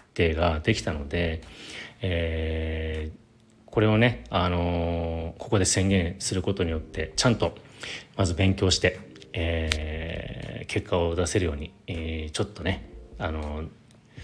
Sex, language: male, Japanese